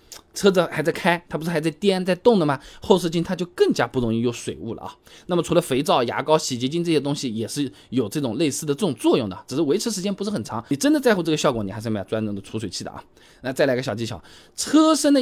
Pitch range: 130-200 Hz